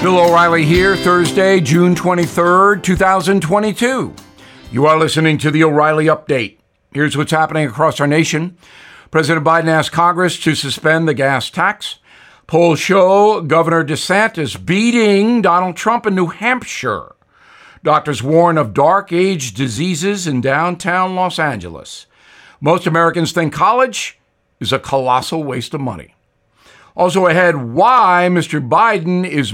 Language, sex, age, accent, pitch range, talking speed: English, male, 60-79, American, 155-190 Hz, 130 wpm